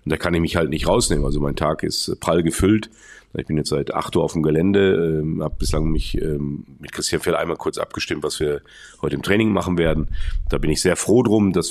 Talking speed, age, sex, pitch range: 235 wpm, 40-59, male, 75-85 Hz